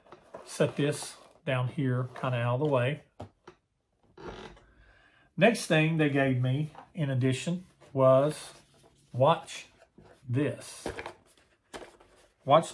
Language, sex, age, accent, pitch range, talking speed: English, male, 50-69, American, 120-150 Hz, 100 wpm